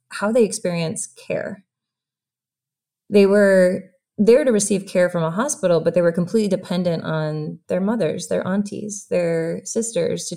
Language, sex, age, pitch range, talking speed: English, female, 20-39, 155-195 Hz, 150 wpm